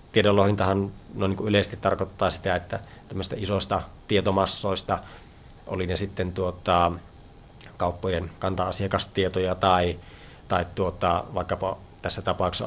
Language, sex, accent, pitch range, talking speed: Finnish, male, native, 95-105 Hz, 105 wpm